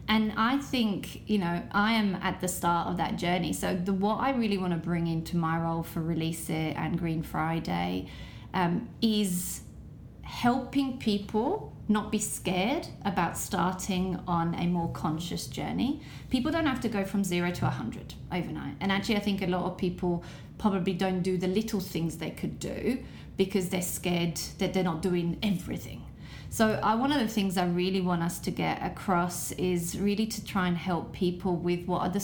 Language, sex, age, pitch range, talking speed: English, female, 30-49, 170-195 Hz, 190 wpm